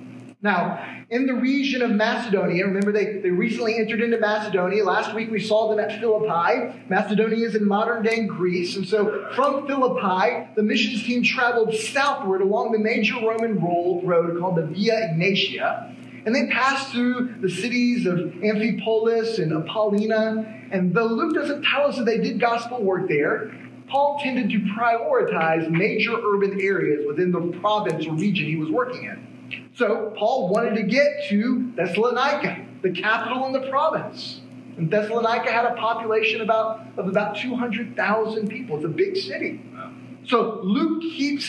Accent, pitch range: American, 190-235 Hz